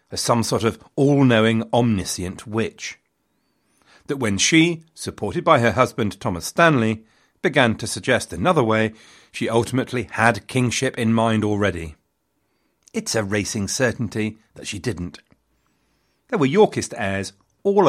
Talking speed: 135 wpm